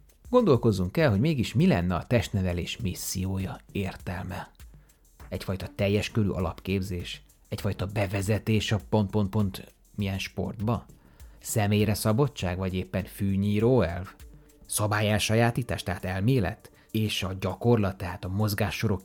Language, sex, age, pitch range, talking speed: Hungarian, male, 30-49, 95-110 Hz, 115 wpm